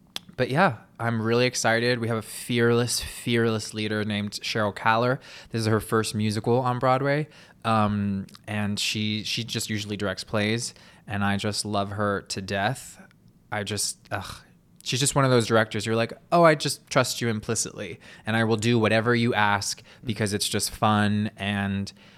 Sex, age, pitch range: male, 20-39, 105-120 Hz